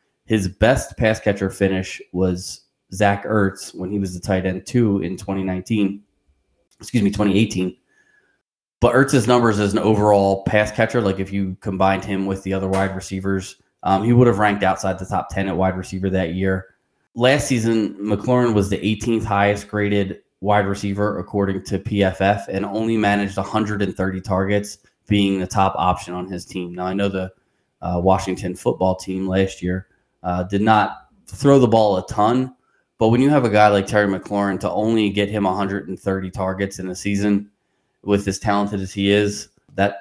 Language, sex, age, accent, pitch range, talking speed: English, male, 20-39, American, 95-105 Hz, 180 wpm